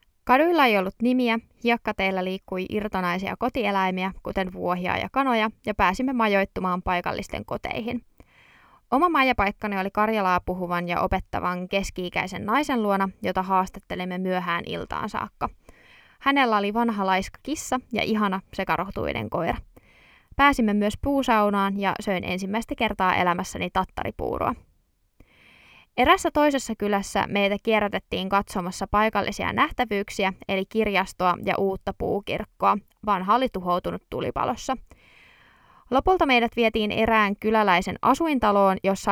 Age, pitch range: 20-39, 185-235 Hz